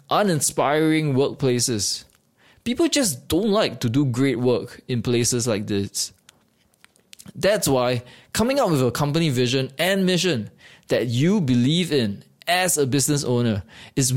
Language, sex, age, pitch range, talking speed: English, male, 20-39, 120-170 Hz, 140 wpm